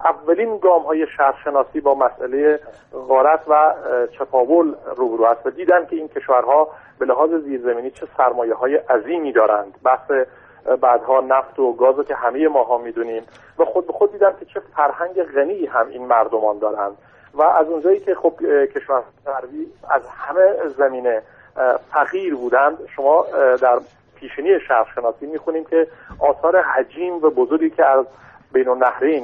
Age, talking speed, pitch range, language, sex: 50-69, 155 wpm, 130-190 Hz, Persian, male